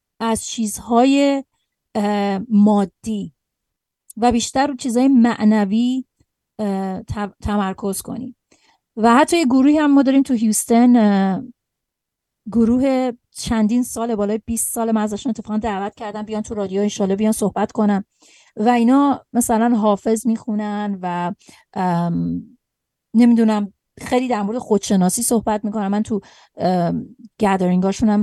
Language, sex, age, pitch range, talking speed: Persian, female, 30-49, 200-240 Hz, 115 wpm